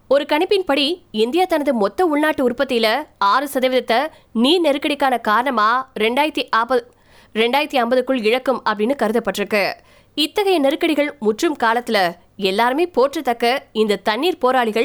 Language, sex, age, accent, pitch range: Tamil, female, 20-39, native, 230-295 Hz